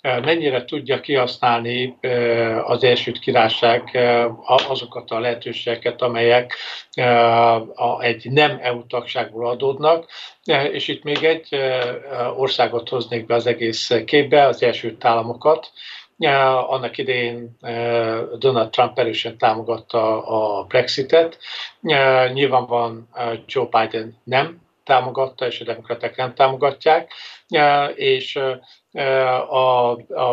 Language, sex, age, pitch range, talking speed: Hungarian, male, 50-69, 120-130 Hz, 95 wpm